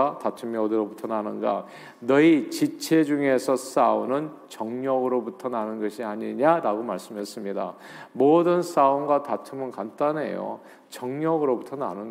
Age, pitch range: 40-59, 120-165 Hz